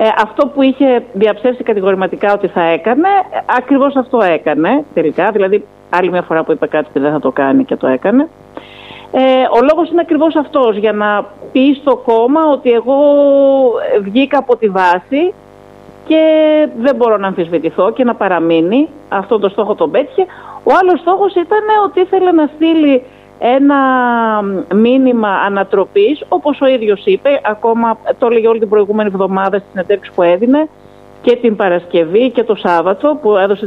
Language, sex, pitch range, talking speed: Greek, female, 195-275 Hz, 165 wpm